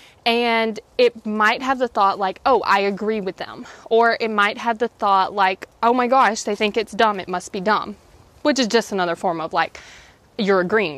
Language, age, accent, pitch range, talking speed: English, 20-39, American, 195-255 Hz, 215 wpm